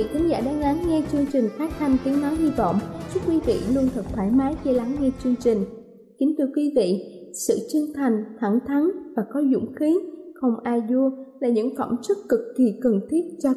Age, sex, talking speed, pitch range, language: 20-39, female, 215 wpm, 230-290 Hz, Vietnamese